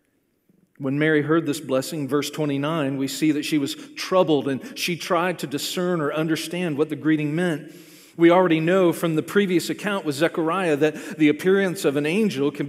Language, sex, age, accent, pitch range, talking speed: English, male, 40-59, American, 150-205 Hz, 190 wpm